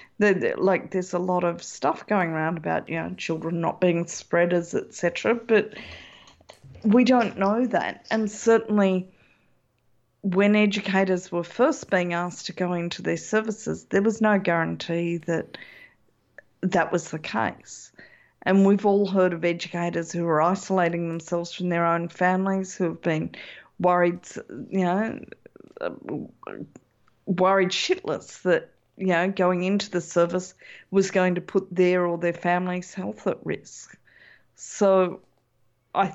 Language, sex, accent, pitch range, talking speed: English, female, Australian, 170-195 Hz, 140 wpm